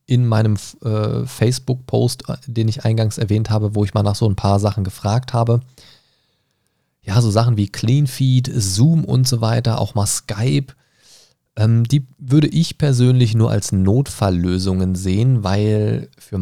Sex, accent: male, German